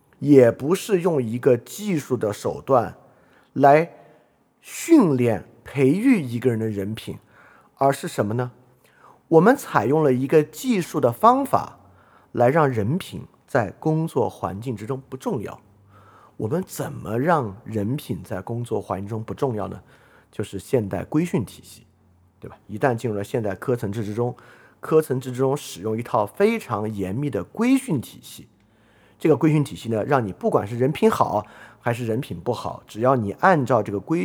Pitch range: 105-145 Hz